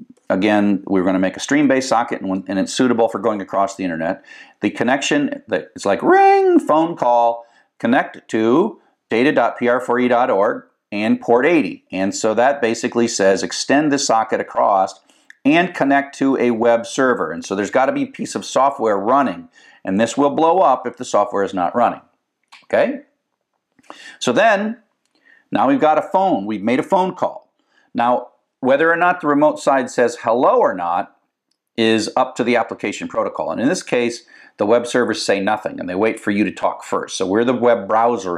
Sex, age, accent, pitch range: male, 50-69, American, 110-170 Hz